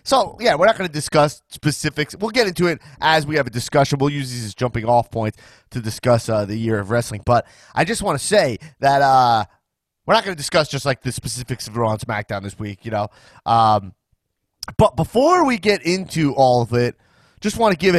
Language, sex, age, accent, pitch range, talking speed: English, male, 30-49, American, 115-155 Hz, 230 wpm